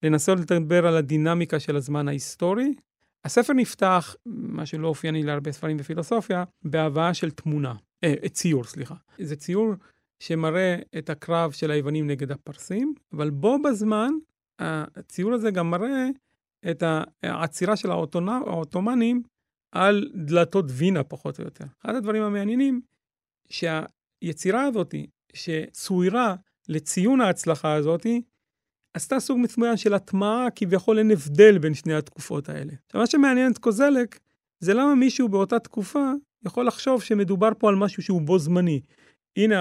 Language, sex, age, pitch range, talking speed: Hebrew, male, 40-59, 155-220 Hz, 130 wpm